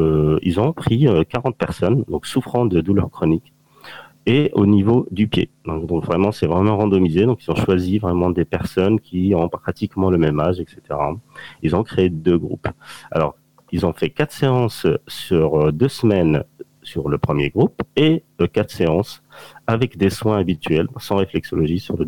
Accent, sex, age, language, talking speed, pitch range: French, male, 40-59, French, 180 wpm, 80-105 Hz